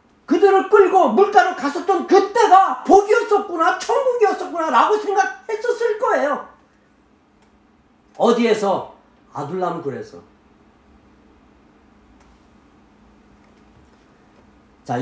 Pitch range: 220-360 Hz